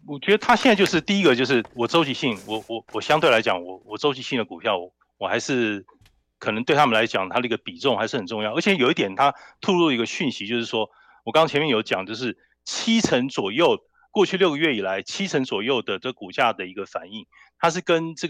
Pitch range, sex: 120-190 Hz, male